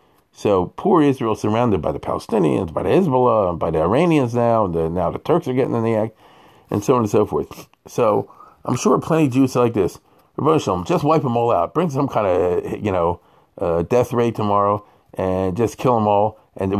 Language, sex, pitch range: English, male, 100-155 Hz